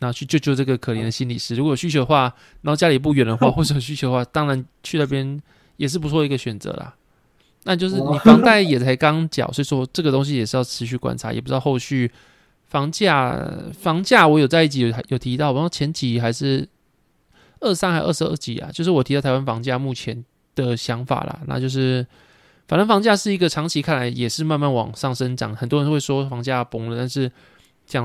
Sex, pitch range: male, 125-150 Hz